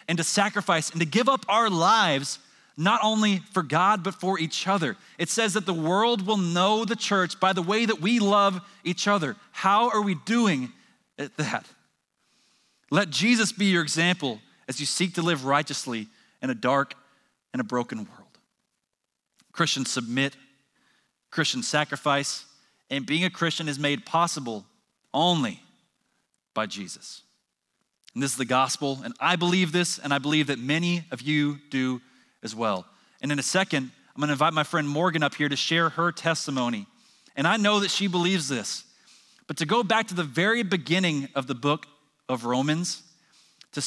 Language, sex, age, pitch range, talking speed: English, male, 30-49, 145-200 Hz, 175 wpm